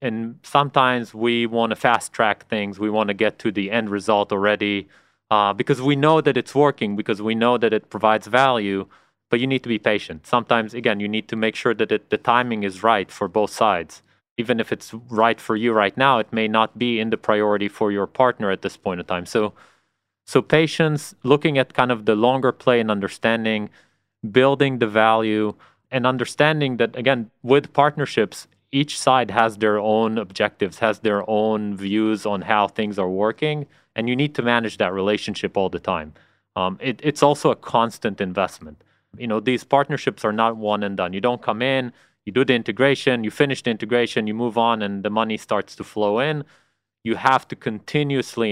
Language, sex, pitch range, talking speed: Hebrew, male, 105-125 Hz, 205 wpm